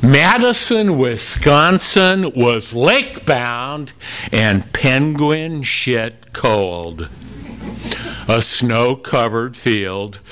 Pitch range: 110-140 Hz